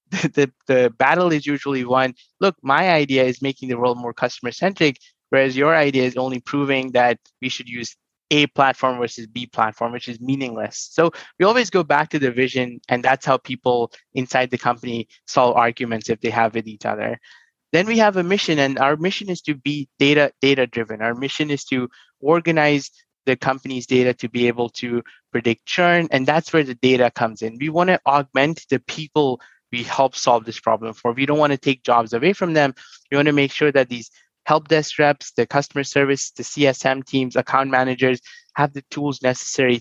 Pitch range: 125-145 Hz